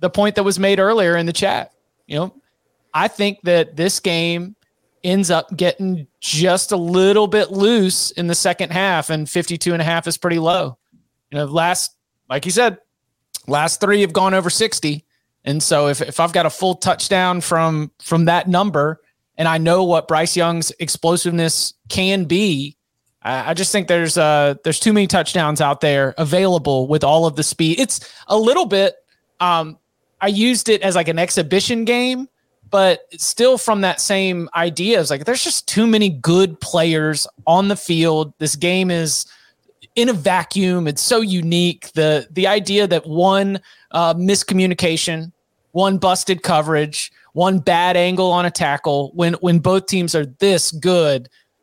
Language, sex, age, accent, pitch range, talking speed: English, male, 30-49, American, 155-190 Hz, 175 wpm